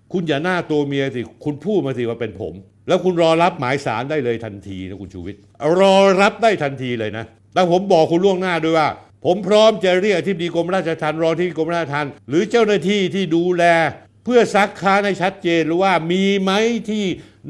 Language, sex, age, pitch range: Thai, male, 60-79, 120-185 Hz